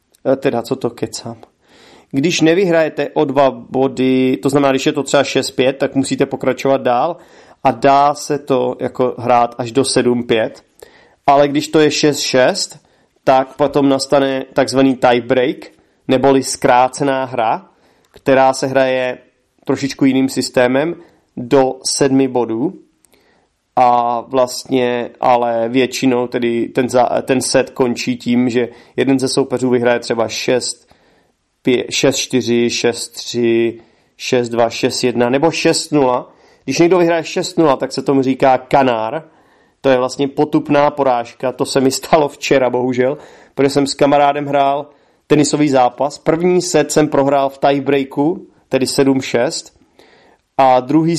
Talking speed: 130 wpm